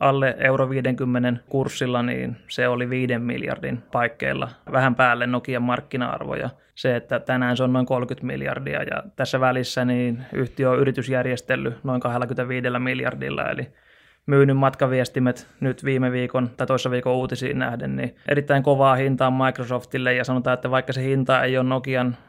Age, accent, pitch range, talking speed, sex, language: 20-39, native, 125-135 Hz, 155 wpm, male, Finnish